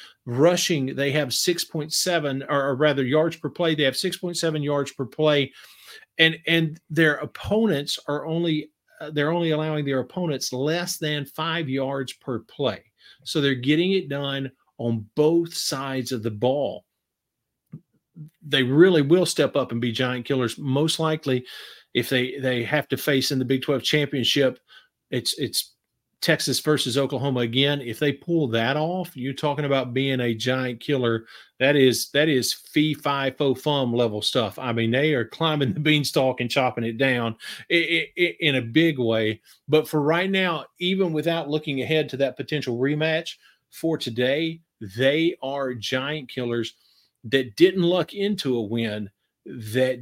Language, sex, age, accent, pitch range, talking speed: English, male, 50-69, American, 125-155 Hz, 155 wpm